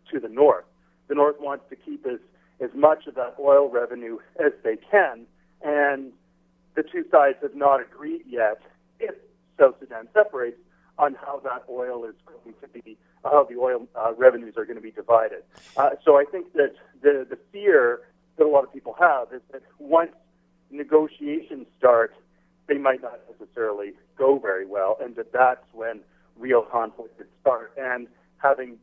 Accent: American